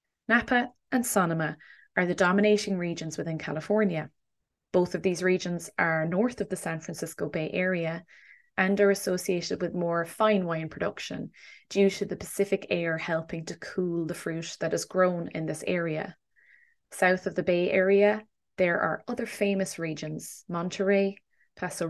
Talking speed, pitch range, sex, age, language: 155 wpm, 160-200 Hz, female, 20-39, English